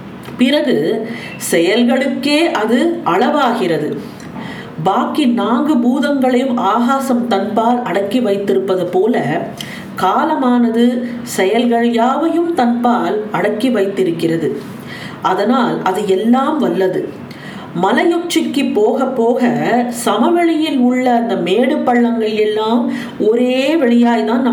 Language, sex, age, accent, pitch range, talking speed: Tamil, female, 50-69, native, 220-265 Hz, 75 wpm